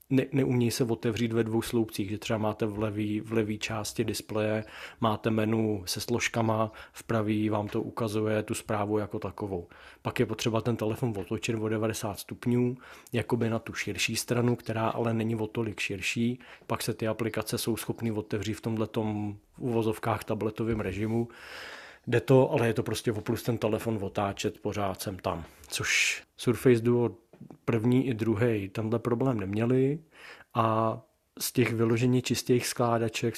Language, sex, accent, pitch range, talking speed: Czech, male, native, 110-115 Hz, 160 wpm